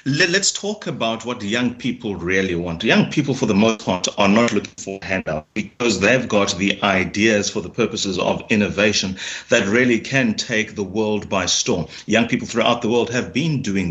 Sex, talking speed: male, 195 wpm